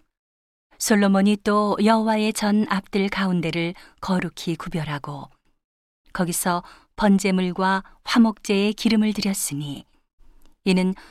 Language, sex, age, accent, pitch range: Korean, female, 40-59, native, 180-210 Hz